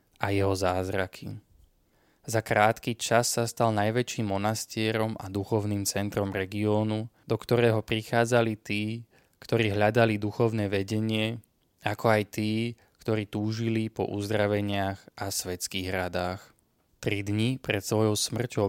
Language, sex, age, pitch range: Slovak, male, 20-39, 100-110 Hz